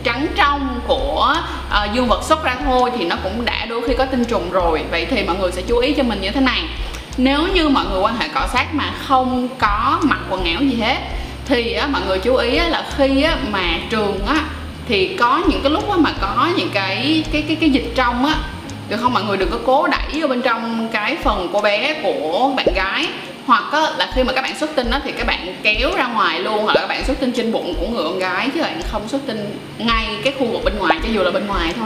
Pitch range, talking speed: 225-280 Hz, 265 wpm